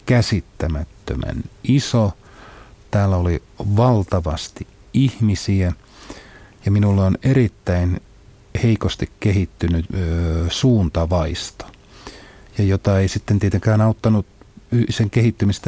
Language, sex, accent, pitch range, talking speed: Finnish, male, native, 90-110 Hz, 85 wpm